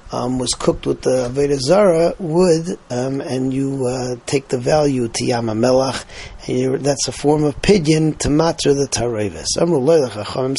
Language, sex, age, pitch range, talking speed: English, male, 40-59, 125-165 Hz, 175 wpm